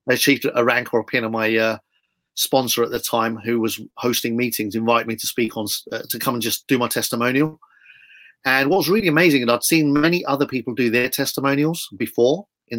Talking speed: 215 wpm